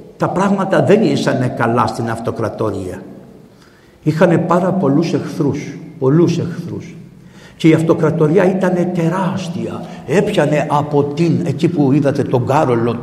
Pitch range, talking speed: 145-185 Hz, 120 wpm